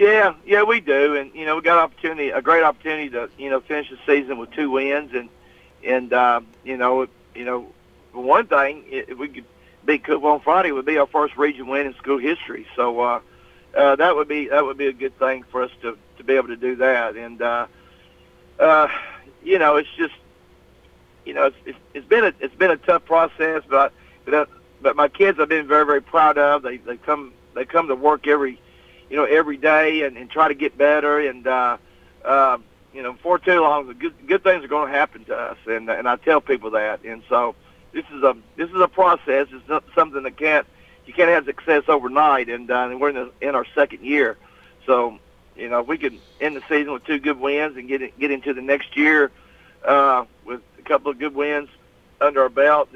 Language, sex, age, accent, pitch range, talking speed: English, male, 60-79, American, 125-150 Hz, 230 wpm